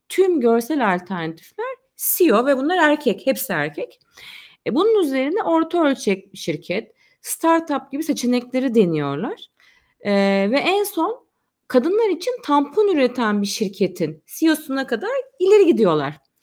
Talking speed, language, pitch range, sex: 125 wpm, Turkish, 200-320 Hz, female